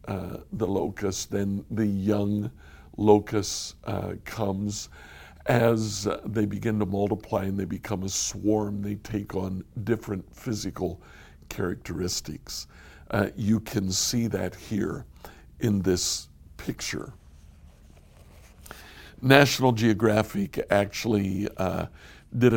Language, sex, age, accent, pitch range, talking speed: English, male, 60-79, American, 90-115 Hz, 105 wpm